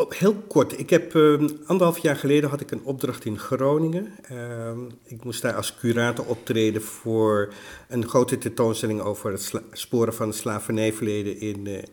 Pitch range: 115-140 Hz